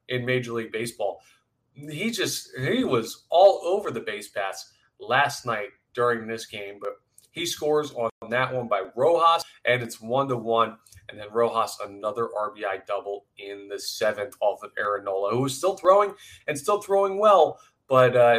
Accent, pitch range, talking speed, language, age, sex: American, 115-140 Hz, 170 wpm, English, 30-49, male